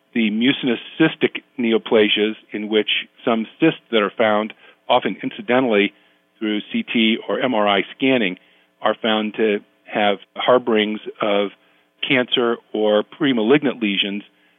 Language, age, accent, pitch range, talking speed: English, 40-59, American, 100-120 Hz, 115 wpm